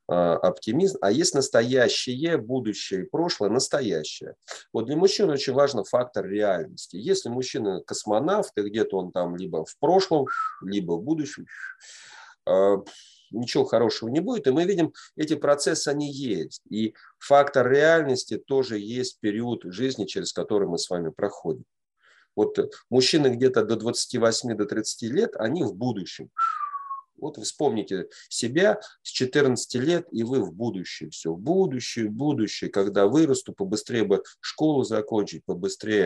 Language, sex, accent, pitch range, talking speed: Russian, male, native, 105-145 Hz, 140 wpm